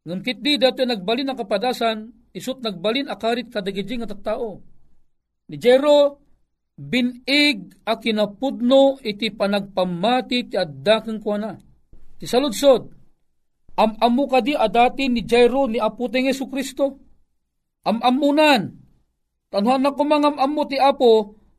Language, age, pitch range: Filipino, 40-59, 190-260 Hz